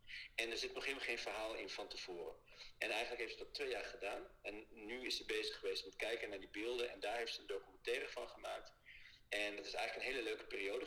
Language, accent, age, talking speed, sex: Dutch, Dutch, 50-69, 250 wpm, male